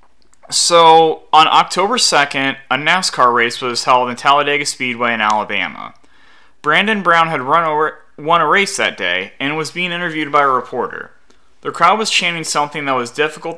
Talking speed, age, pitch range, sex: 170 wpm, 30-49, 140-200 Hz, male